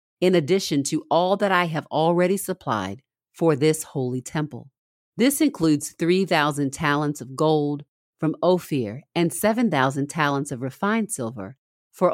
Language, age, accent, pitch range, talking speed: English, 40-59, American, 135-170 Hz, 140 wpm